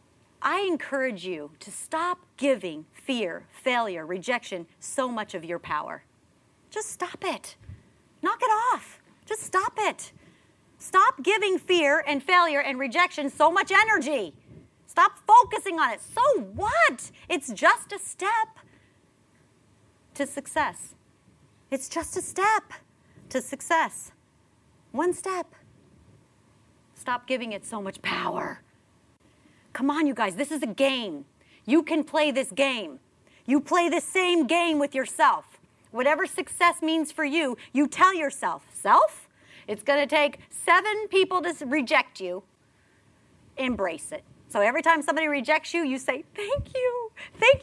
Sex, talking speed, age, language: female, 140 wpm, 40-59, English